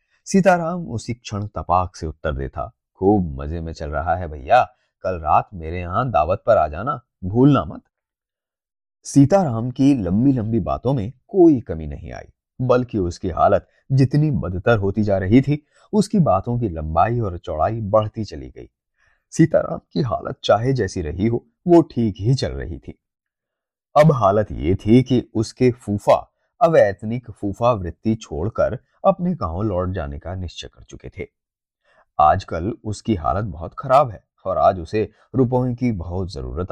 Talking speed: 160 wpm